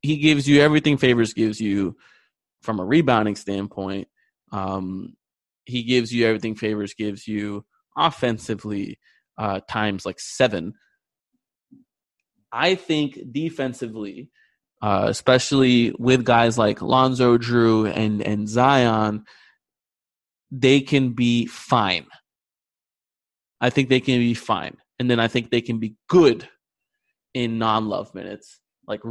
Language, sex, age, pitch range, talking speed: English, male, 20-39, 105-130 Hz, 120 wpm